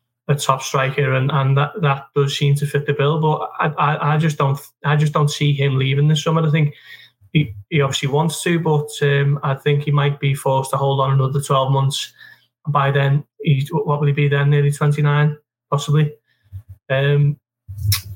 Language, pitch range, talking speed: English, 135-150 Hz, 200 wpm